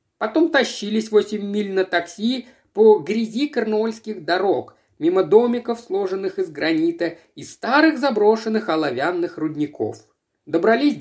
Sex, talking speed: male, 115 wpm